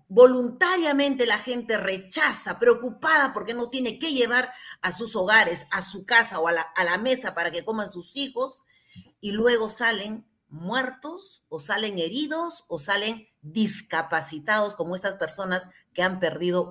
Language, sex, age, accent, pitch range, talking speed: Spanish, female, 40-59, Mexican, 185-275 Hz, 150 wpm